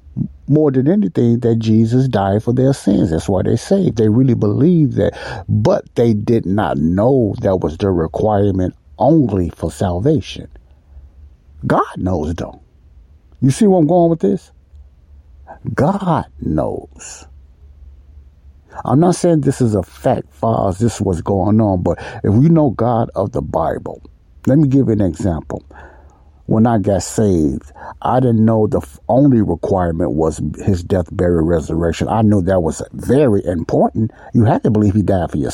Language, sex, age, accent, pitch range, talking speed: English, male, 60-79, American, 80-120 Hz, 165 wpm